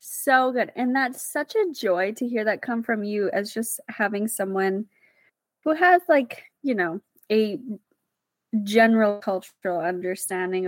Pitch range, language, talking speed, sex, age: 200-255 Hz, English, 145 wpm, female, 20-39